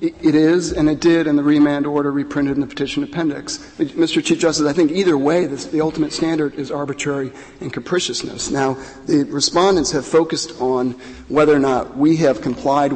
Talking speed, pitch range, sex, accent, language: 185 wpm, 125-160 Hz, male, American, English